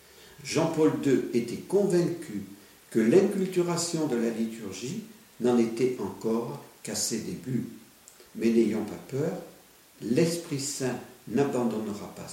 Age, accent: 50-69, French